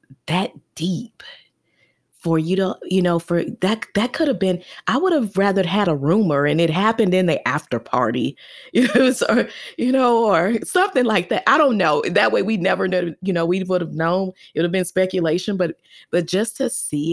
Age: 20-39